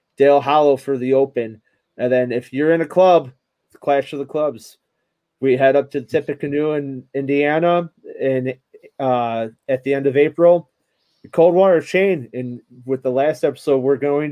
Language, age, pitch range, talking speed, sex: English, 30-49, 130-150 Hz, 170 wpm, male